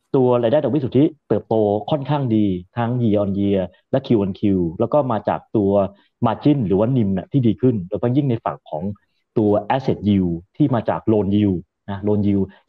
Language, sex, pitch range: Thai, male, 105-135 Hz